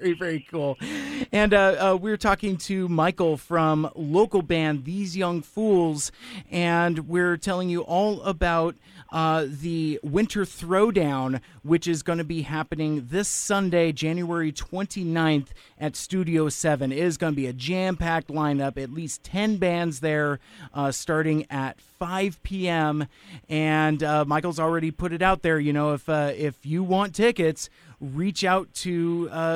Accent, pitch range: American, 145-185 Hz